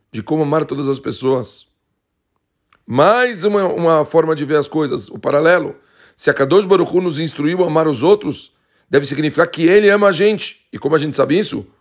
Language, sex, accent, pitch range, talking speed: Portuguese, male, Brazilian, 135-170 Hz, 200 wpm